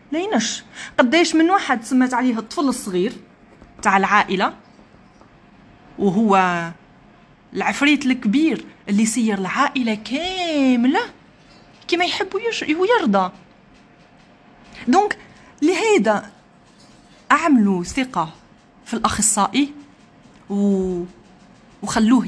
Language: Arabic